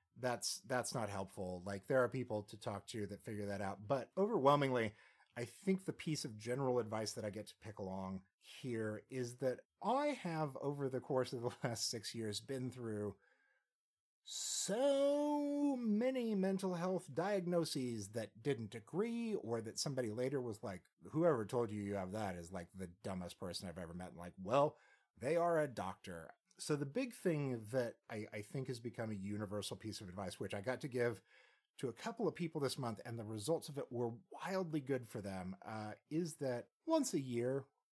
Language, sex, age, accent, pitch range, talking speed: English, male, 30-49, American, 105-145 Hz, 195 wpm